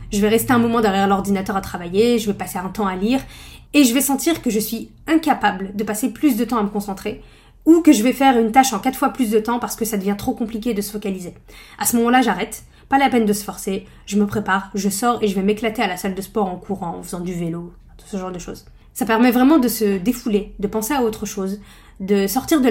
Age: 20-39